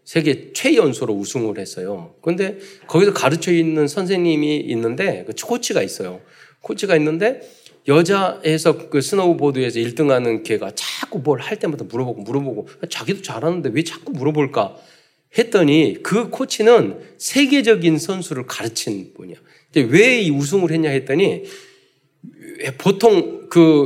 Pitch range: 135-205 Hz